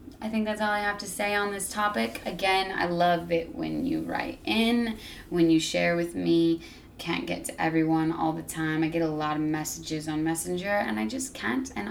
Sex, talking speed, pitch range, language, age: female, 220 wpm, 155-185 Hz, English, 20-39